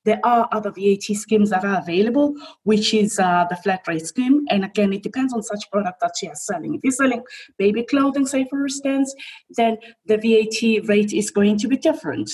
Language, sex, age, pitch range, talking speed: English, female, 20-39, 190-235 Hz, 210 wpm